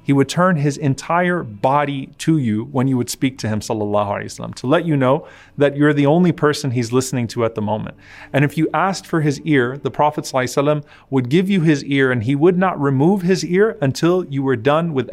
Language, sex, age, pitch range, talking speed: English, male, 30-49, 125-155 Hz, 240 wpm